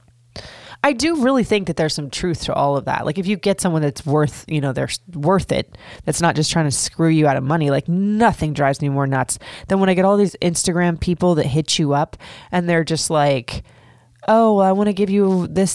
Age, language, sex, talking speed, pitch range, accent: 20-39, English, female, 240 wpm, 140-185 Hz, American